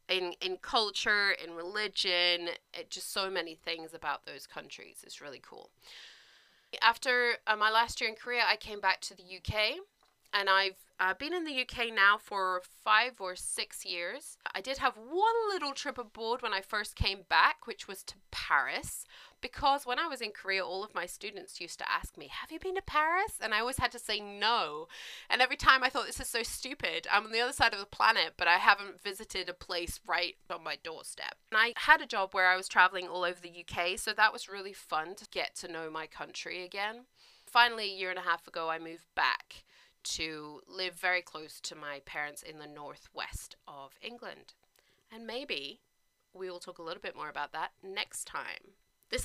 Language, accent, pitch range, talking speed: English, British, 180-255 Hz, 210 wpm